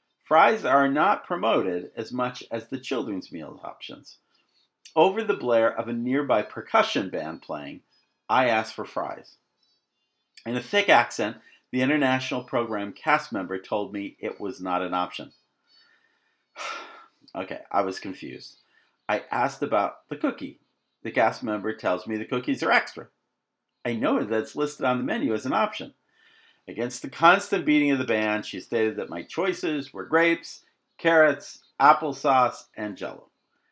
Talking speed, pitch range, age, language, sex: 155 wpm, 110-160 Hz, 50-69, English, male